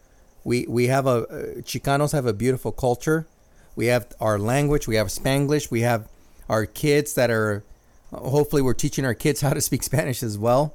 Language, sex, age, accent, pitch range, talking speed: English, male, 40-59, American, 110-140 Hz, 190 wpm